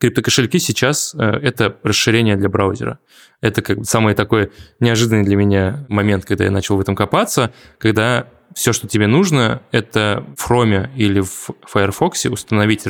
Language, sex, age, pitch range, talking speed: Russian, male, 20-39, 100-120 Hz, 150 wpm